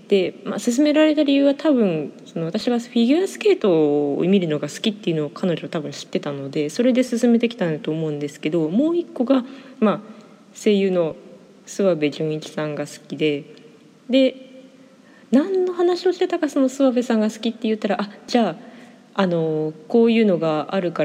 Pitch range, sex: 175-265 Hz, female